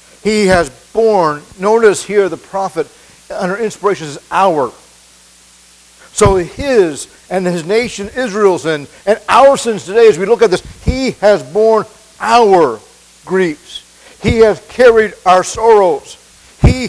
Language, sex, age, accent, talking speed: English, male, 60-79, American, 135 wpm